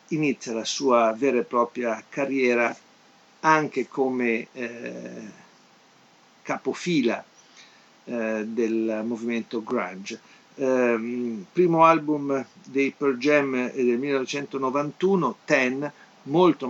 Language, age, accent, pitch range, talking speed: Italian, 50-69, native, 115-145 Hz, 90 wpm